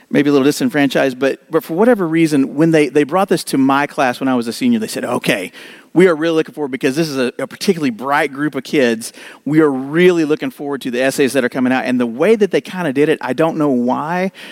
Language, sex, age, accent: English, male, 40-59, American